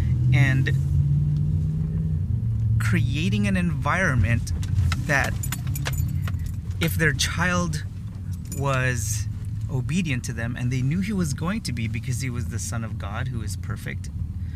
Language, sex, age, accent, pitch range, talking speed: English, male, 30-49, American, 95-120 Hz, 125 wpm